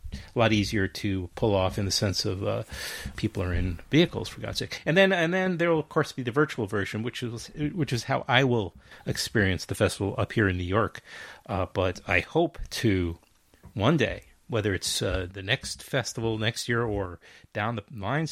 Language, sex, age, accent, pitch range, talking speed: English, male, 40-59, American, 105-140 Hz, 205 wpm